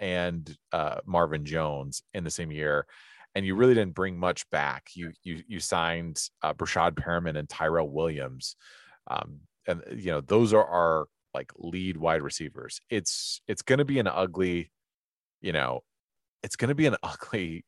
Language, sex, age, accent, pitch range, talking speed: English, male, 30-49, American, 80-100 Hz, 175 wpm